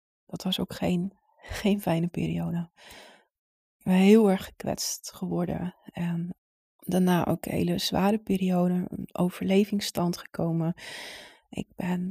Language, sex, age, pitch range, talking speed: Dutch, female, 20-39, 175-210 Hz, 125 wpm